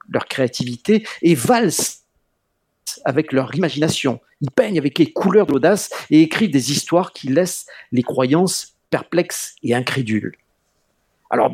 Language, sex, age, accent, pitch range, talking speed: French, male, 50-69, French, 135-190 Hz, 130 wpm